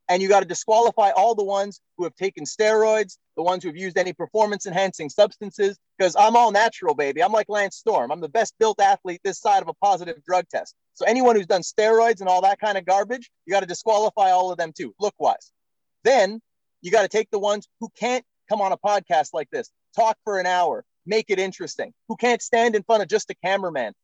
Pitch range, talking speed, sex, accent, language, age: 185-230 Hz, 235 wpm, male, American, English, 30-49